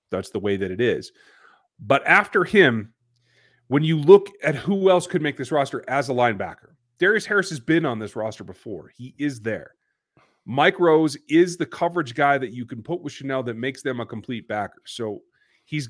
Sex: male